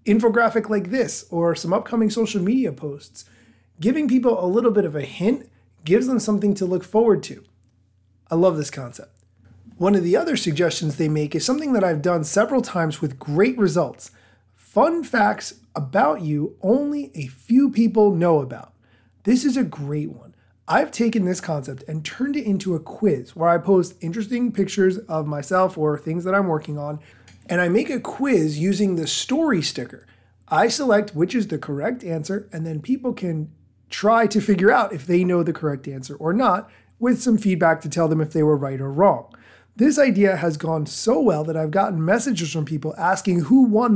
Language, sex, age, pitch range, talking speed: English, male, 30-49, 150-210 Hz, 195 wpm